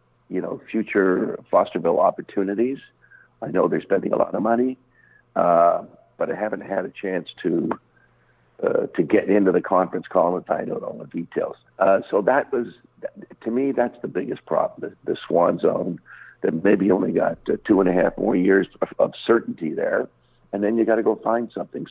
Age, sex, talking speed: 60-79, male, 195 wpm